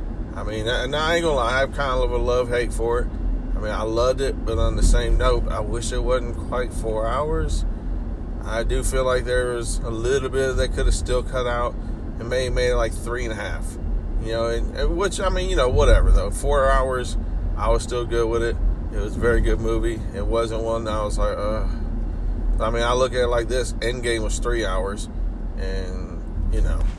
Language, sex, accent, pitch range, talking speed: English, male, American, 85-120 Hz, 235 wpm